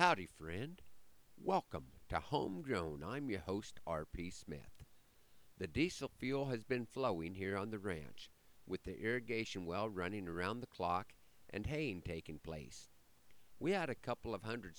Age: 50-69